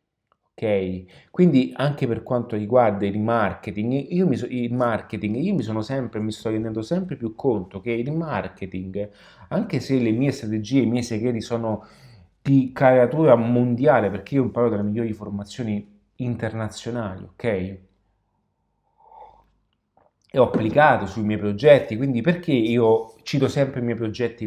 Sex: male